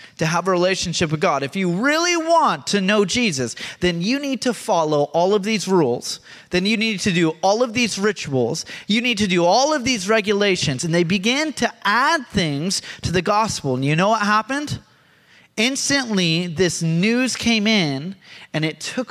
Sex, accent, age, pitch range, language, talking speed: male, American, 30-49, 170-245 Hz, English, 190 wpm